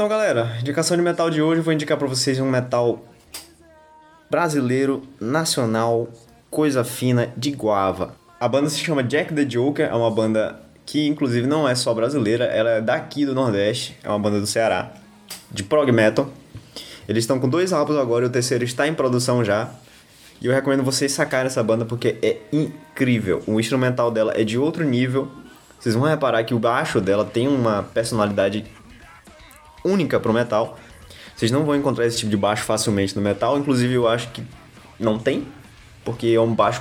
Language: Portuguese